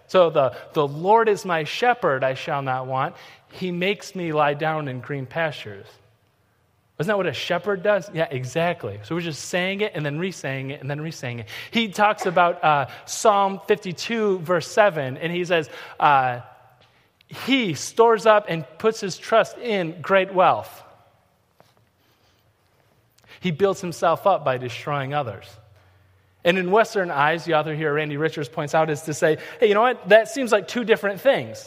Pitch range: 135-195 Hz